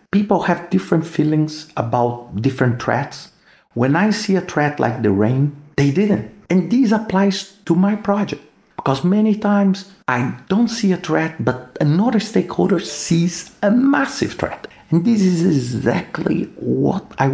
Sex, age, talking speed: male, 50-69, 150 wpm